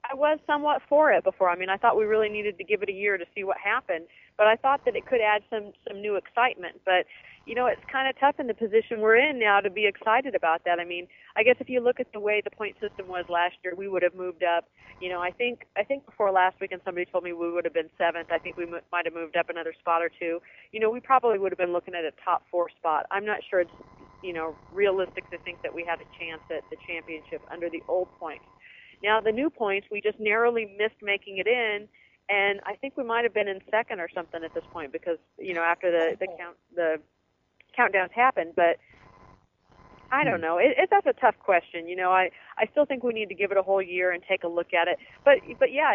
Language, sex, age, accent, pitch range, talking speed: English, female, 40-59, American, 175-235 Hz, 265 wpm